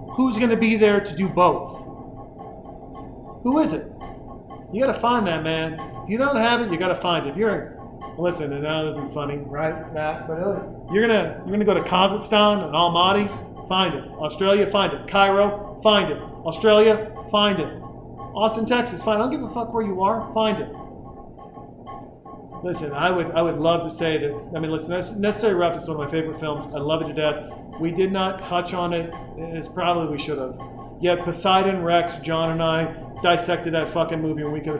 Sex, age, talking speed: male, 40-59, 210 wpm